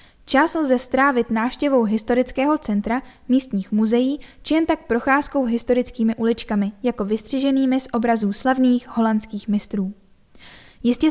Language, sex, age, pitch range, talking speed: Czech, female, 10-29, 225-270 Hz, 120 wpm